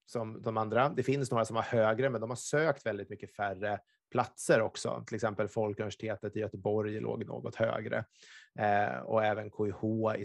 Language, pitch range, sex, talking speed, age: Swedish, 105-115 Hz, male, 180 wpm, 30-49